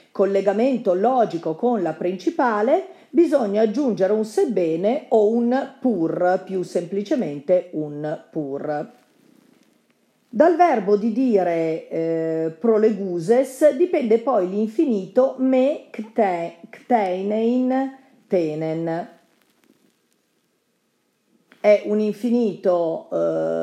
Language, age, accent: Italian, 50-69, native